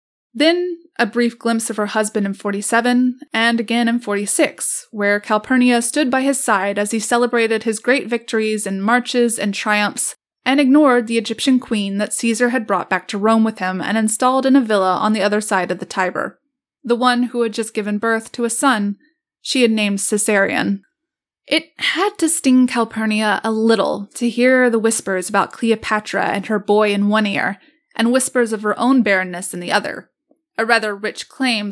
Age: 20-39